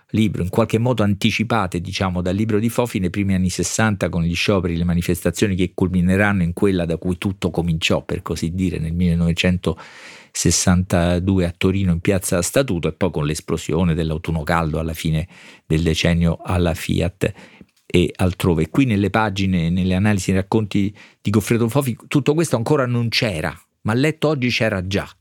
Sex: male